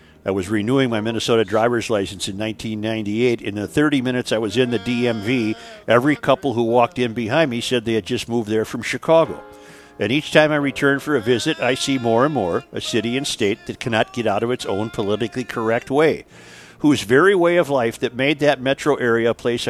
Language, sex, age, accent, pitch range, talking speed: English, male, 50-69, American, 110-135 Hz, 220 wpm